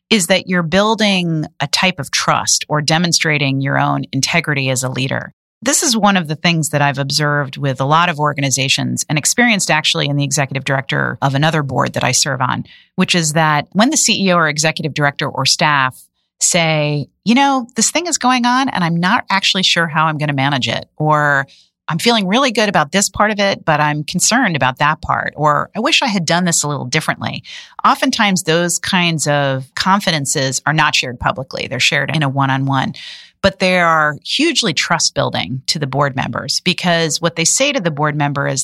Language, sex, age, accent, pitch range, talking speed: English, female, 40-59, American, 140-185 Hz, 205 wpm